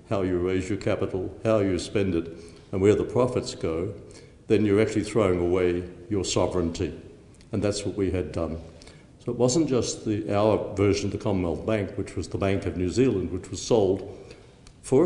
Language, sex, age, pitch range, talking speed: English, male, 60-79, 95-110 Hz, 190 wpm